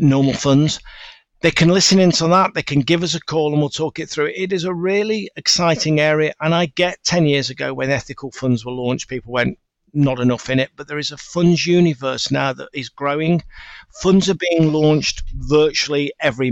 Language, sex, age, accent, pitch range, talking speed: English, male, 50-69, British, 135-170 Hz, 210 wpm